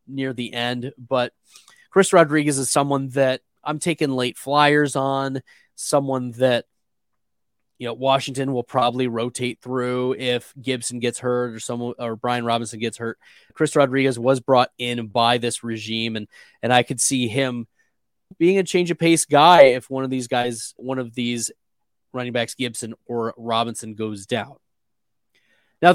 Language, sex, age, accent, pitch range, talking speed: English, male, 20-39, American, 120-170 Hz, 160 wpm